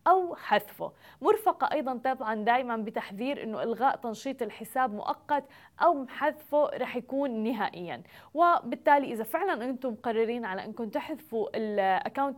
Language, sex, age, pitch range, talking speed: Arabic, female, 20-39, 225-290 Hz, 125 wpm